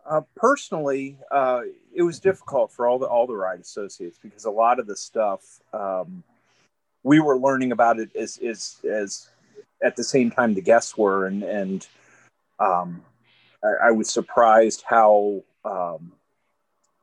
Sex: male